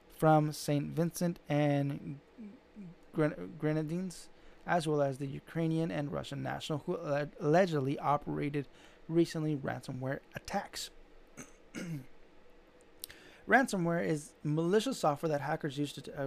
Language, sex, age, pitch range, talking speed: English, male, 30-49, 145-165 Hz, 110 wpm